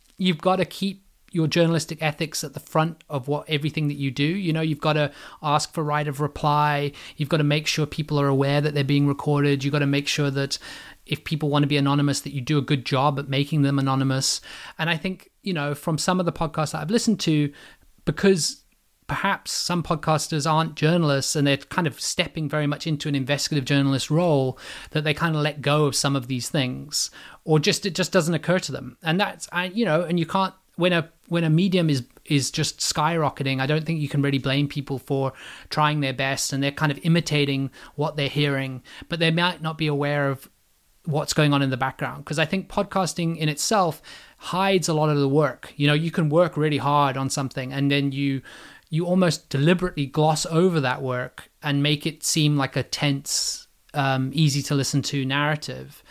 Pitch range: 140-165 Hz